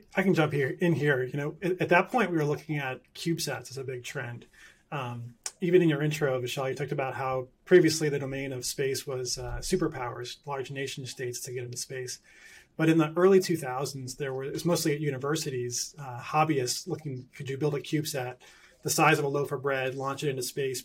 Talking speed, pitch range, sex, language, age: 220 wpm, 130-150 Hz, male, English, 30-49